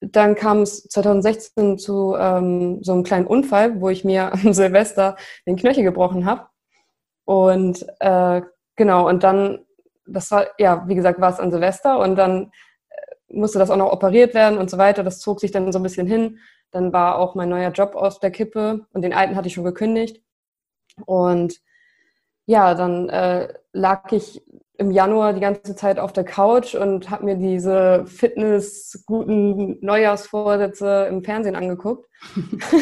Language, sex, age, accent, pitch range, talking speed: German, female, 20-39, German, 190-220 Hz, 165 wpm